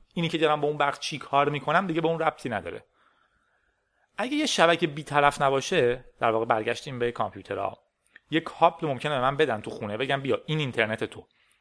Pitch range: 120-160 Hz